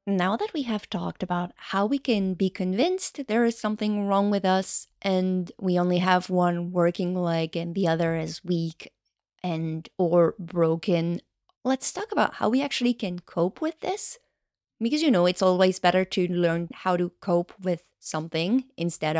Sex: female